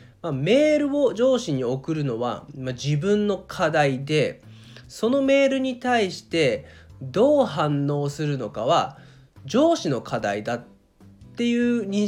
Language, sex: Japanese, male